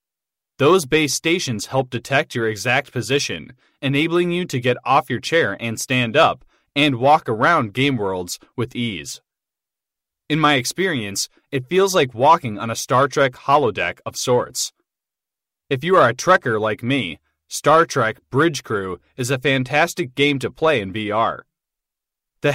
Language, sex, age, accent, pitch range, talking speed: English, male, 20-39, American, 120-150 Hz, 155 wpm